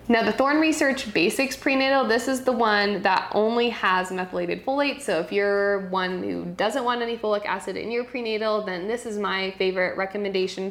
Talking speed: 190 wpm